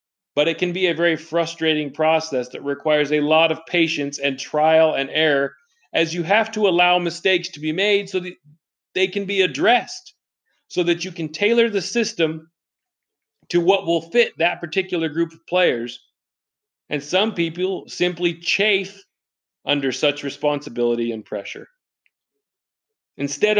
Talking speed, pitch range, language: 155 wpm, 145-190 Hz, English